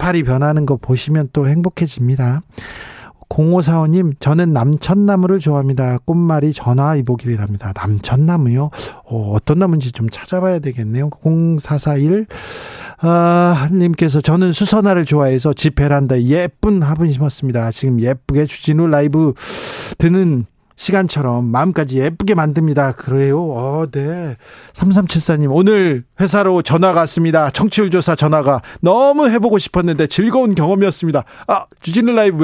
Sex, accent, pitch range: male, native, 135-185 Hz